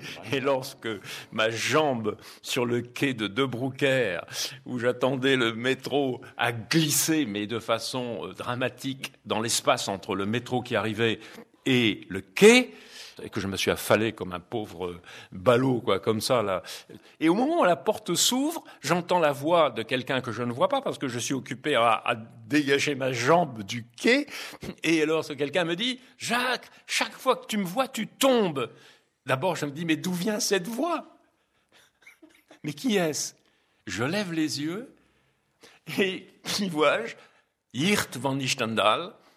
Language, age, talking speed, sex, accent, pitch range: French, 60-79, 165 wpm, male, French, 115-170 Hz